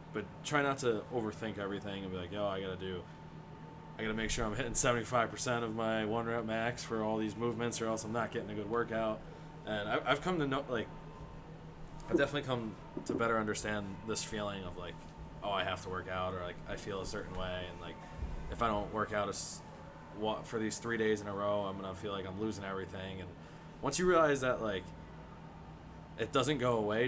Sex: male